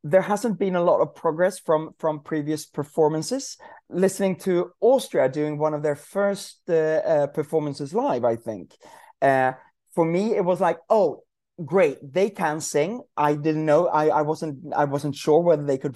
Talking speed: 180 wpm